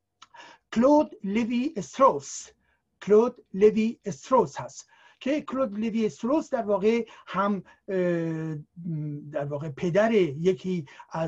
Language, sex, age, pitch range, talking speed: Persian, male, 60-79, 155-215 Hz, 80 wpm